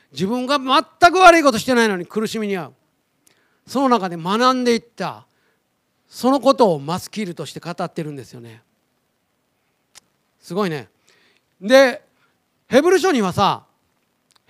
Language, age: Japanese, 40-59